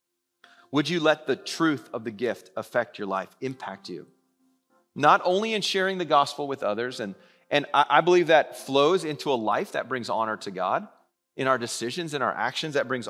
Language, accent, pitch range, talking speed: English, American, 130-180 Hz, 200 wpm